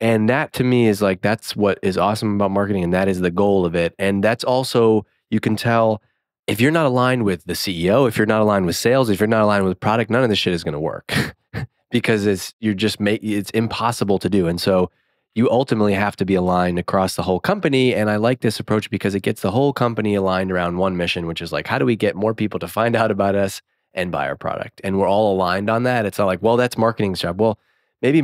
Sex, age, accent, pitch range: male, 20-39, American, 95-120 Hz